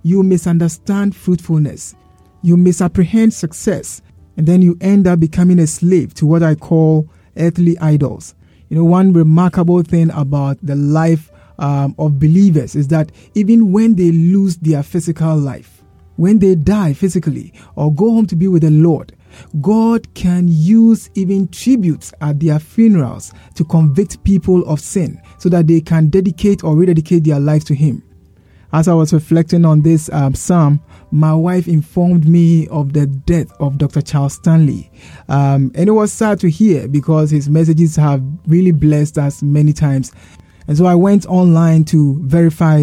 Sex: male